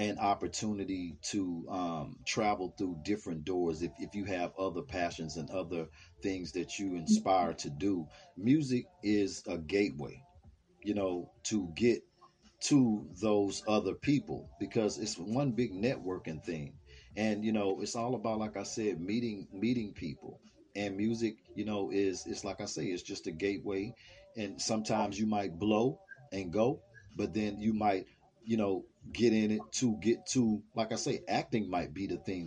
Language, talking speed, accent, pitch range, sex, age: English, 170 wpm, American, 95-115 Hz, male, 40-59